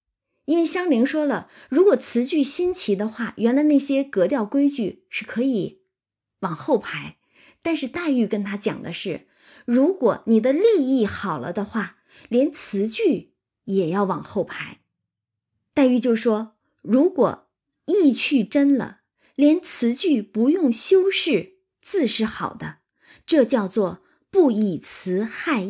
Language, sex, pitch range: Chinese, female, 220-315 Hz